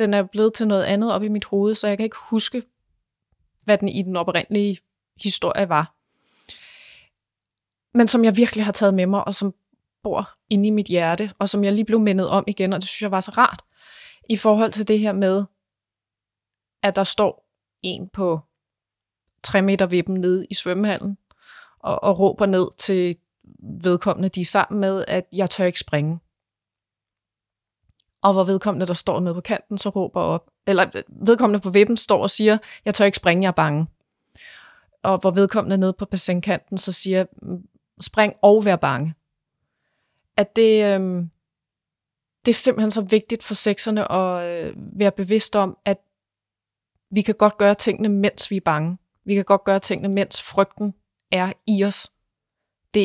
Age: 20-39